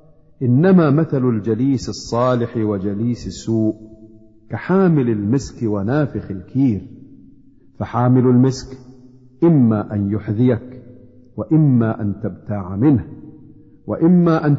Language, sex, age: Arabic, male, 50-69